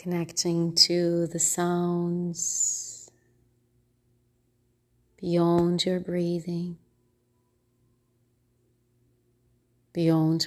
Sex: female